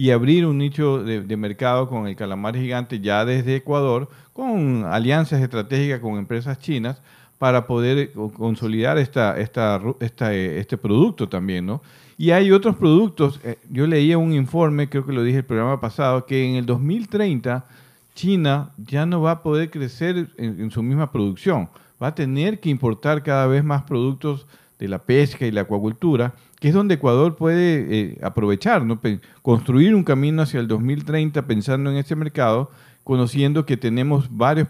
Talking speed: 170 wpm